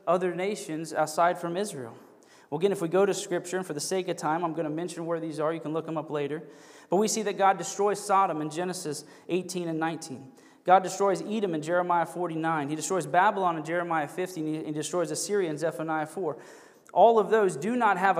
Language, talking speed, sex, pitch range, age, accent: English, 225 wpm, male, 155-180 Hz, 20-39, American